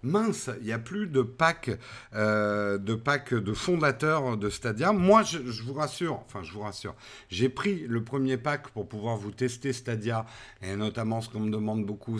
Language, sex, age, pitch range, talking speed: French, male, 50-69, 105-130 Hz, 195 wpm